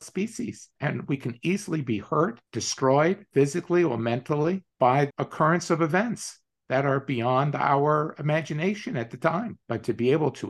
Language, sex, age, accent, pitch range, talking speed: English, male, 50-69, American, 120-165 Hz, 160 wpm